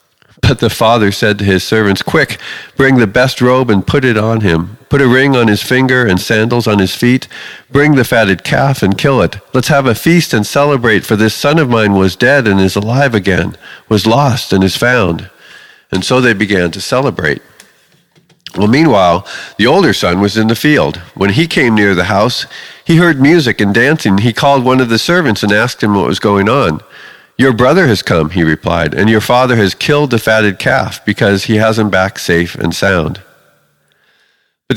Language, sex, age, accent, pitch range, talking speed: English, male, 50-69, American, 95-130 Hz, 205 wpm